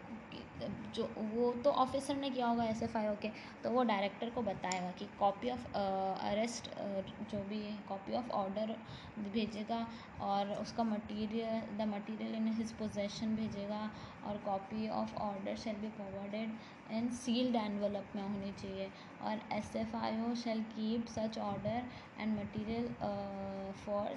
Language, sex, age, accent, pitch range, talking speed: Hindi, female, 20-39, native, 200-235 Hz, 145 wpm